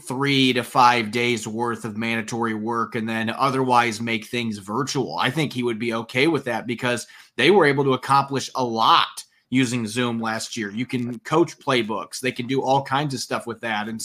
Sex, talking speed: male, 205 wpm